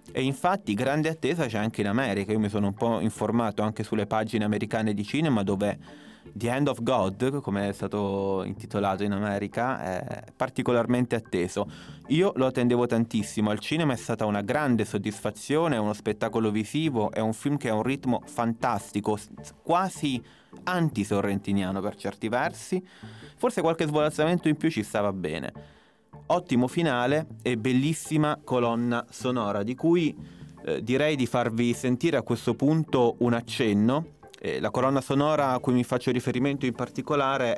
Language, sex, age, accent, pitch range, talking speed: Italian, male, 20-39, native, 105-135 Hz, 160 wpm